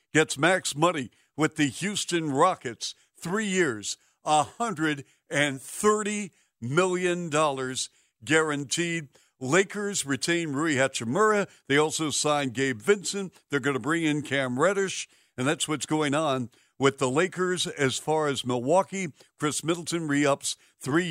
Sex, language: male, English